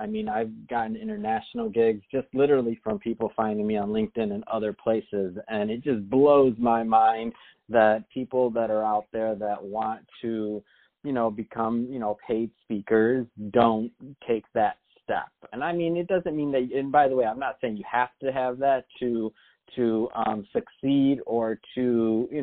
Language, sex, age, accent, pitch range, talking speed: English, male, 30-49, American, 110-130 Hz, 180 wpm